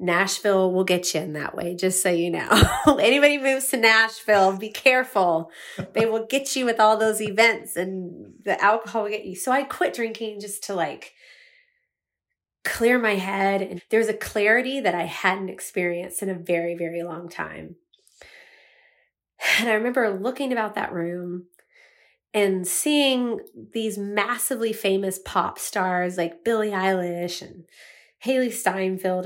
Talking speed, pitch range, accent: 155 wpm, 185-230 Hz, American